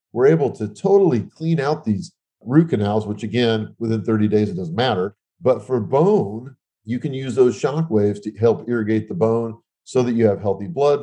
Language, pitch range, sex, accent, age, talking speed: English, 105-135 Hz, male, American, 40-59, 200 wpm